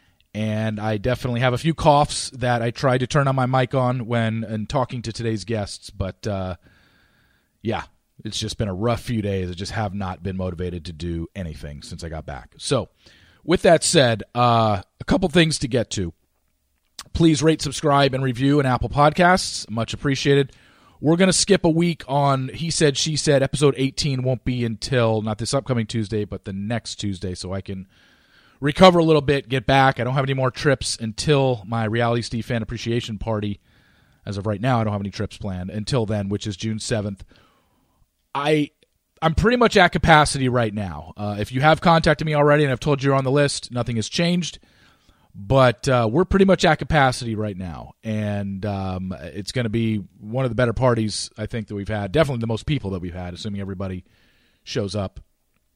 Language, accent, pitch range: English, American, 100-140 Hz